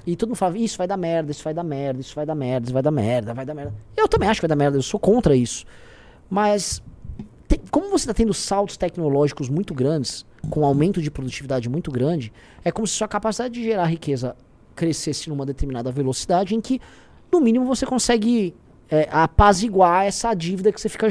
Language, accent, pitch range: Portuguese, Brazilian, 140-220 Hz